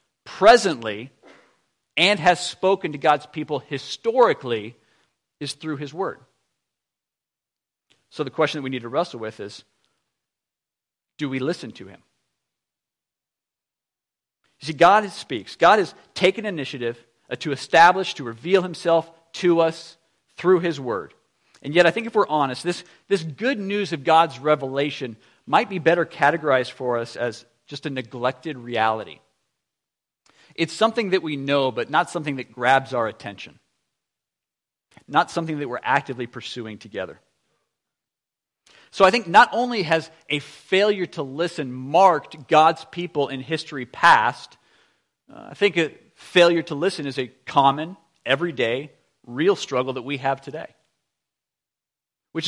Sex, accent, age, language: male, American, 50-69, English